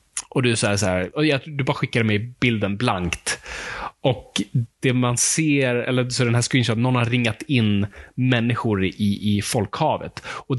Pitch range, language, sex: 110-145 Hz, Swedish, male